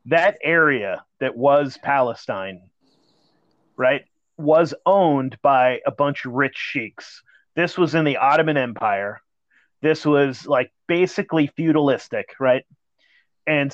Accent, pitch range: American, 135-165 Hz